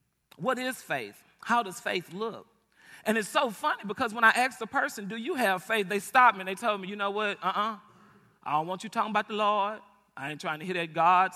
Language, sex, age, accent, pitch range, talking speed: English, male, 40-59, American, 170-225 Hz, 250 wpm